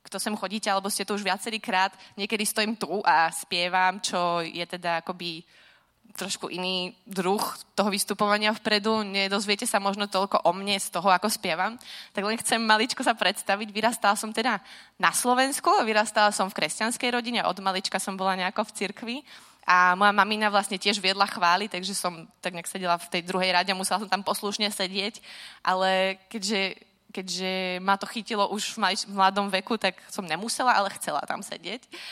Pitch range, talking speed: 185-215 Hz, 175 wpm